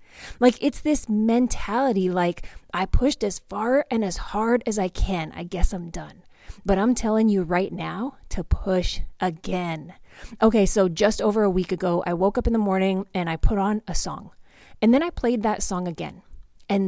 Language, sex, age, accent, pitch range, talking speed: English, female, 20-39, American, 180-225 Hz, 195 wpm